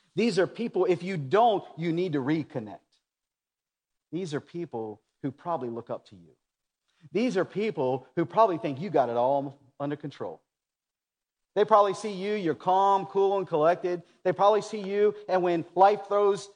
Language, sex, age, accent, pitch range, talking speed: English, male, 40-59, American, 130-200 Hz, 175 wpm